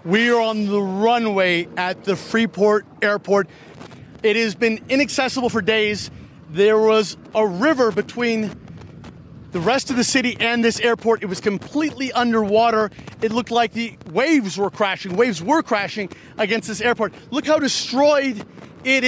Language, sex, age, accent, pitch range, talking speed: English, male, 30-49, American, 175-230 Hz, 155 wpm